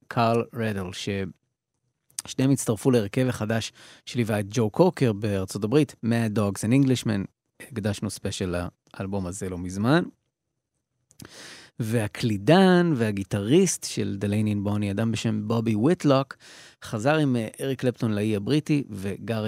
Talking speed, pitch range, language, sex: 120 wpm, 100-130 Hz, Hebrew, male